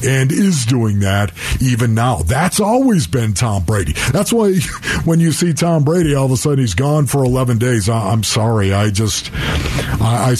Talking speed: 190 wpm